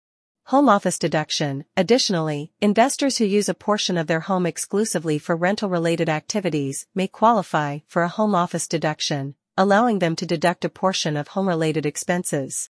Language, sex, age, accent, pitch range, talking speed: English, female, 40-59, American, 165-205 Hz, 150 wpm